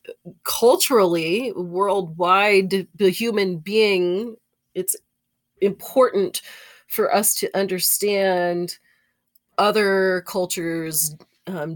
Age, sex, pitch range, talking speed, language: 30-49, female, 165-210 Hz, 70 wpm, English